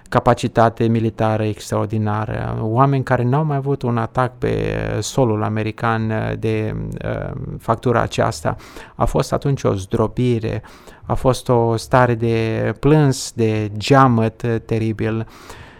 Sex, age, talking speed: male, 20-39, 115 wpm